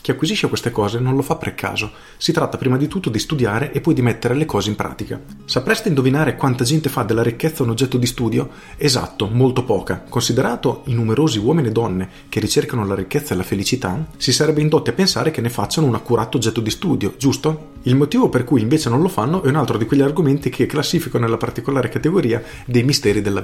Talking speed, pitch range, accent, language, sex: 220 wpm, 105-140 Hz, native, Italian, male